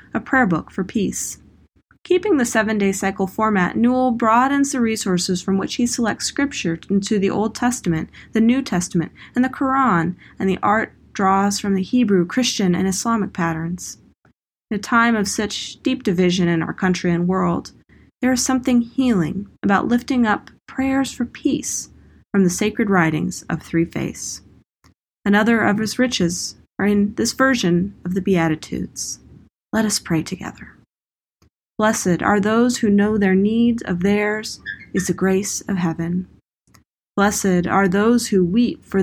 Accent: American